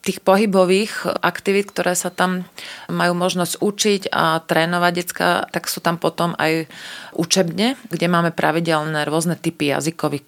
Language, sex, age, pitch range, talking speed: Slovak, female, 30-49, 155-185 Hz, 140 wpm